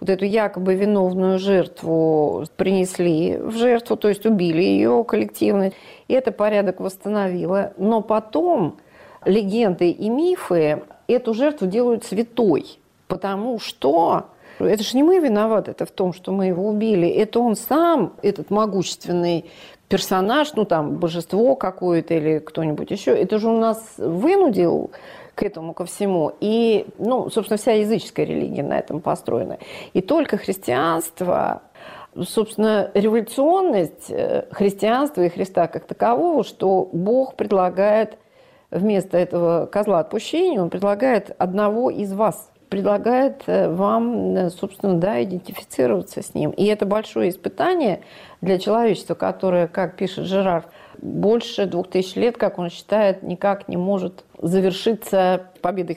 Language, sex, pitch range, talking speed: Russian, female, 180-225 Hz, 130 wpm